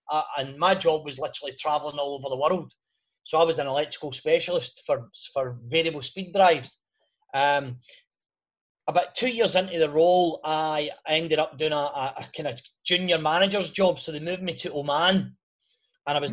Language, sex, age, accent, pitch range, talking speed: English, male, 30-49, British, 145-190 Hz, 185 wpm